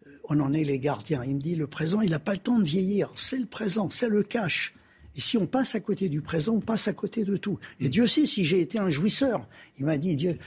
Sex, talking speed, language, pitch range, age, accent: male, 280 wpm, French, 155-215 Hz, 60-79, French